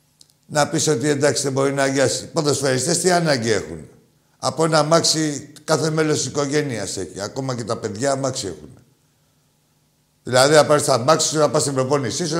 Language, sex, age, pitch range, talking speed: Greek, male, 60-79, 135-165 Hz, 160 wpm